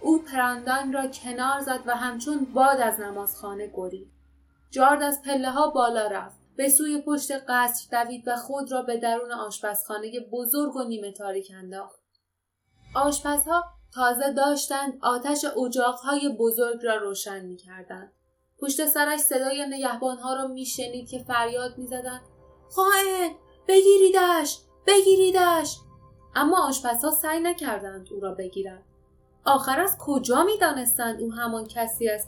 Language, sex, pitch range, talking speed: Persian, female, 215-285 Hz, 125 wpm